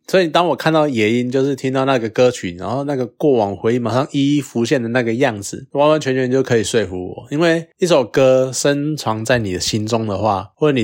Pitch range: 105-140 Hz